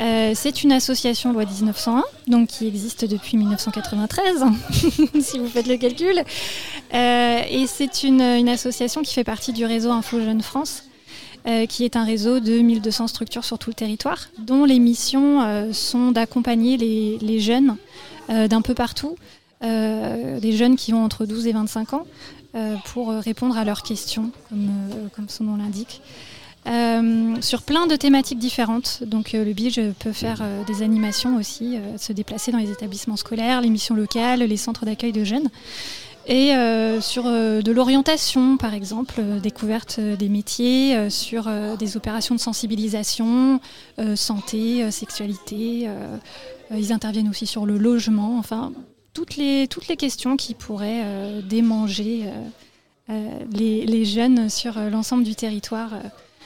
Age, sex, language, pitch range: 20-39, female, French, 220-250 Hz